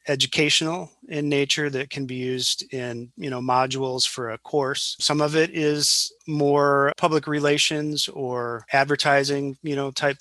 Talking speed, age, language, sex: 155 wpm, 30-49, English, male